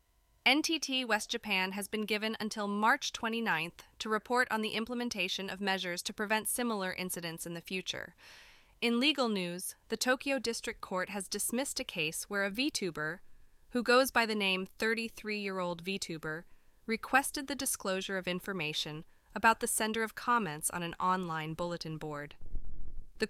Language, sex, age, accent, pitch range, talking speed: English, female, 20-39, American, 175-220 Hz, 155 wpm